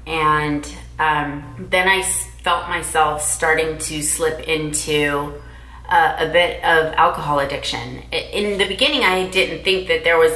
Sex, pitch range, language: female, 150-170 Hz, English